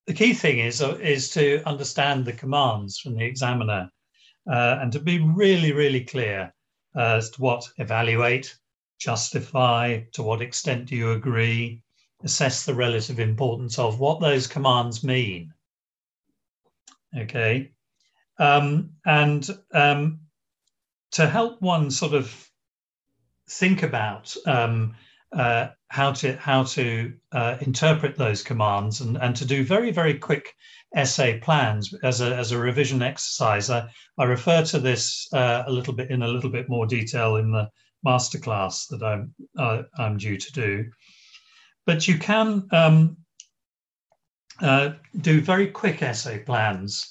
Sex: male